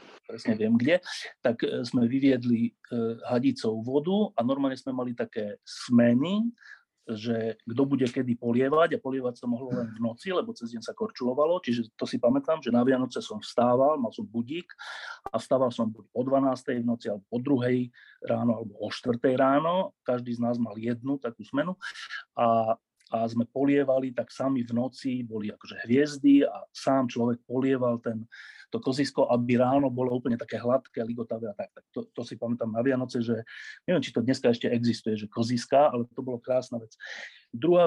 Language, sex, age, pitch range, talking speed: Slovak, male, 40-59, 120-140 Hz, 180 wpm